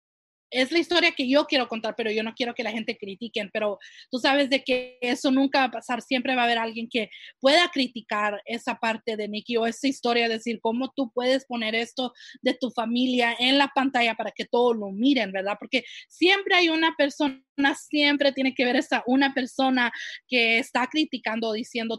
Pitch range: 230-275 Hz